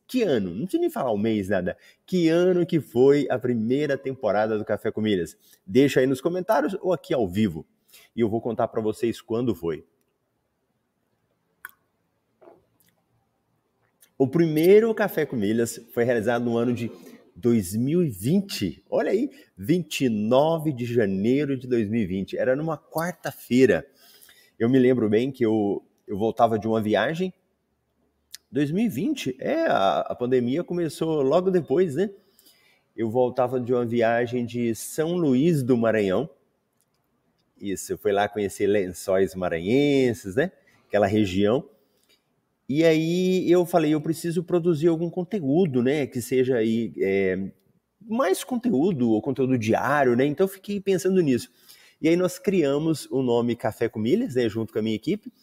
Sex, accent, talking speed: male, Brazilian, 145 wpm